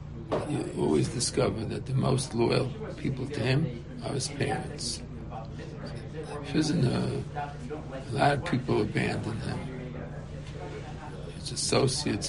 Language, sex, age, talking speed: English, male, 60-79, 110 wpm